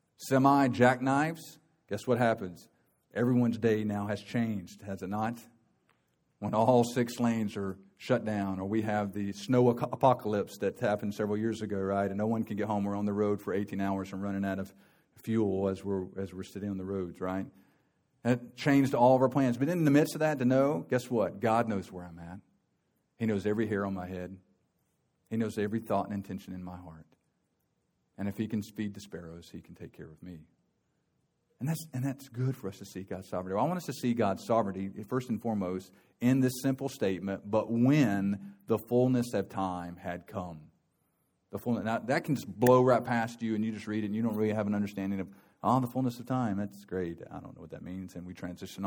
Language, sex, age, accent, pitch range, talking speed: English, male, 50-69, American, 95-125 Hz, 225 wpm